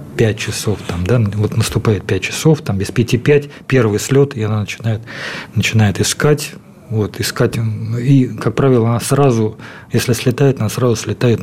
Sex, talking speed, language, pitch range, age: male, 165 wpm, Russian, 110-130 Hz, 40-59